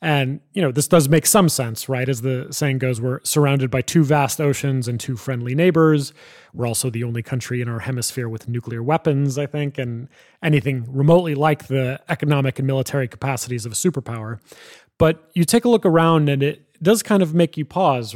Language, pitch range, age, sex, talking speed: English, 125-150 Hz, 30-49, male, 205 wpm